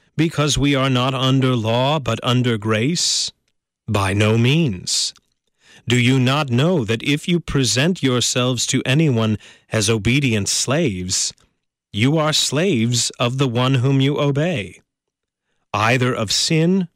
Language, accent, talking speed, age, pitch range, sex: English, American, 135 wpm, 30-49, 110-140 Hz, male